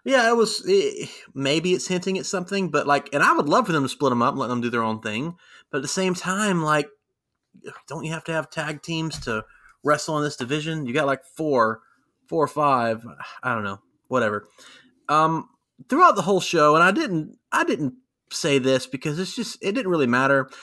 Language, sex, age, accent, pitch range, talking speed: English, male, 30-49, American, 130-175 Hz, 220 wpm